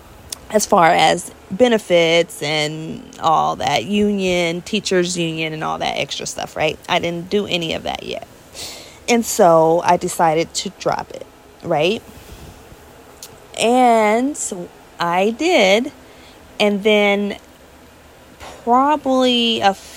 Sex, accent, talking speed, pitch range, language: female, American, 110 wpm, 170-230 Hz, English